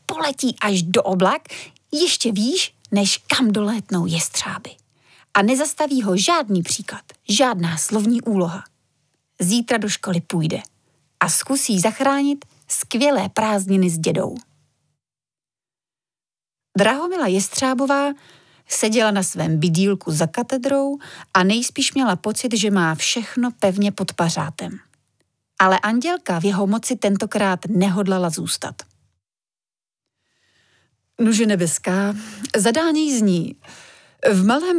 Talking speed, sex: 105 wpm, female